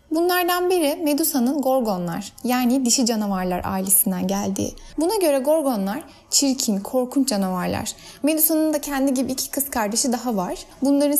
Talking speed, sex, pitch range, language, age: 135 wpm, female, 230-285 Hz, Turkish, 10-29